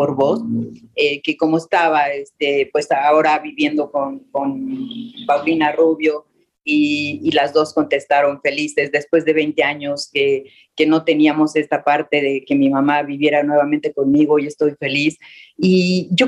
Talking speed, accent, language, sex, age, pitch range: 150 wpm, Mexican, Spanish, female, 40-59, 150-180 Hz